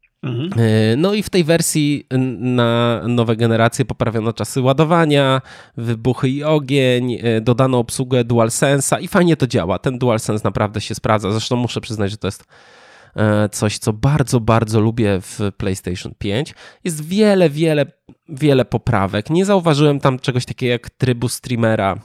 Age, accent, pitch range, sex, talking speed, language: 20-39, native, 110-140 Hz, male, 145 wpm, Polish